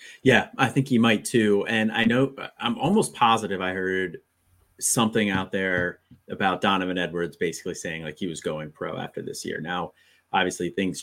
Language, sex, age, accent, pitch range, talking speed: English, male, 30-49, American, 85-105 Hz, 180 wpm